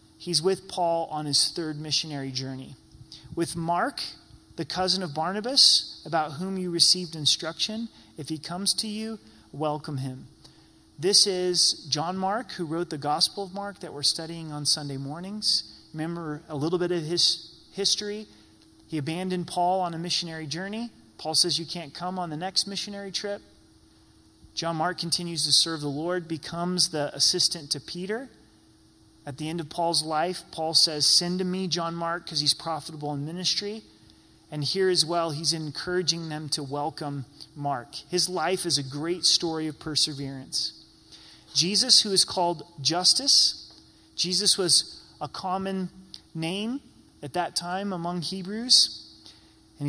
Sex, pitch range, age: male, 150-180 Hz, 30-49